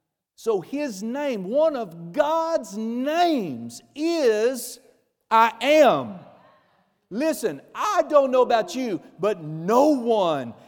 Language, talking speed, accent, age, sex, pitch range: English, 105 wpm, American, 50-69, male, 180-245 Hz